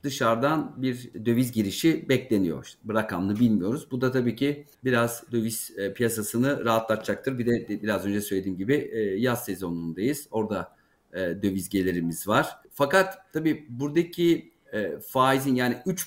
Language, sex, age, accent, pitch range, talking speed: Turkish, male, 50-69, native, 110-135 Hz, 145 wpm